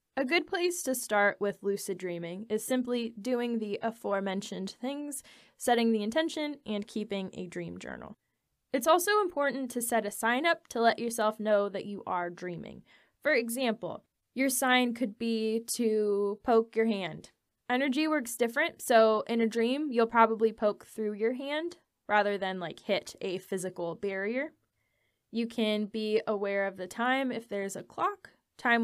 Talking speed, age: 165 wpm, 10-29